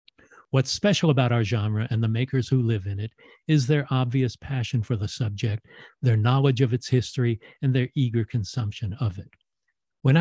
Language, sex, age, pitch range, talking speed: English, male, 50-69, 115-140 Hz, 180 wpm